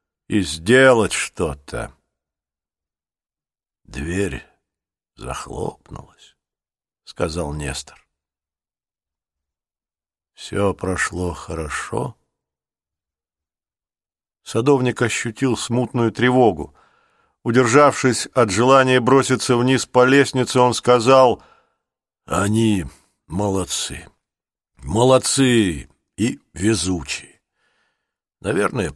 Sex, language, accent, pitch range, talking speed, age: male, Russian, native, 80-120 Hz, 60 wpm, 50-69